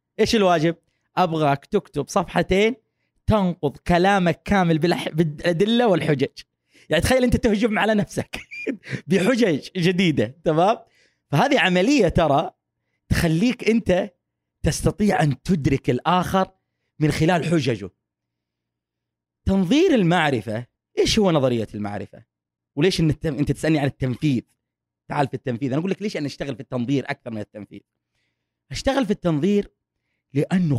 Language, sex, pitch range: Arabic, male, 120-190 Hz